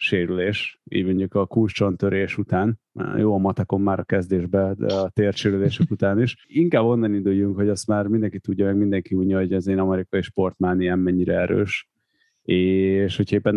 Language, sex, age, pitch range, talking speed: Hungarian, male, 30-49, 95-105 Hz, 170 wpm